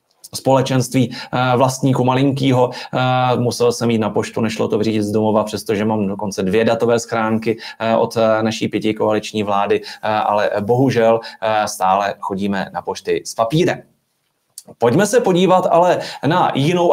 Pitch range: 120-160 Hz